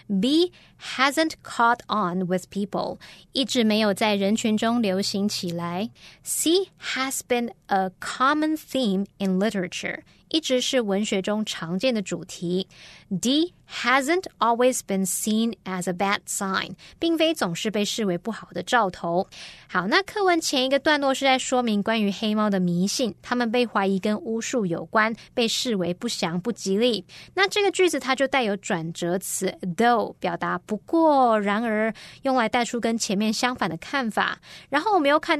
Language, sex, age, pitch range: Chinese, female, 20-39, 195-260 Hz